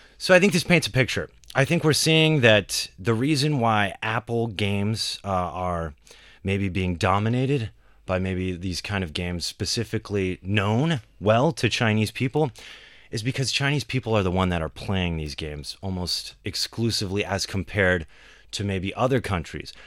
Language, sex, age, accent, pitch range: Chinese, male, 30-49, American, 95-120 Hz